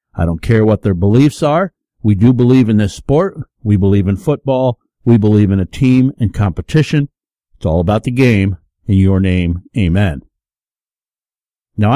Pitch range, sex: 95-130 Hz, male